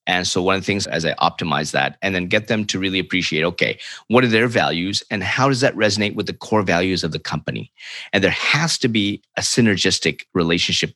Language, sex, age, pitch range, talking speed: English, male, 30-49, 95-120 Hz, 230 wpm